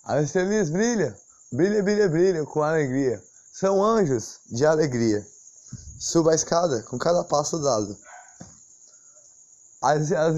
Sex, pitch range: male, 135-195 Hz